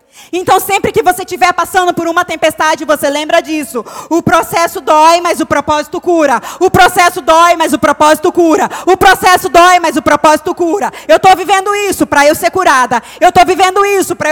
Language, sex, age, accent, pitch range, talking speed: Portuguese, female, 20-39, Brazilian, 285-350 Hz, 195 wpm